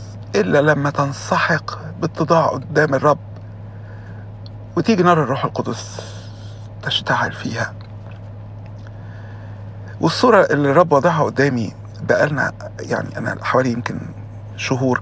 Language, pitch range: Arabic, 105-130 Hz